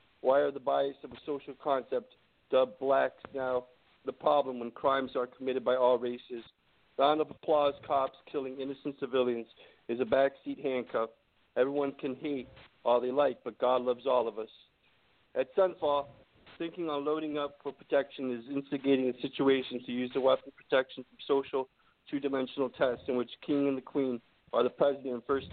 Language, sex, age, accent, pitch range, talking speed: English, male, 50-69, American, 125-140 Hz, 180 wpm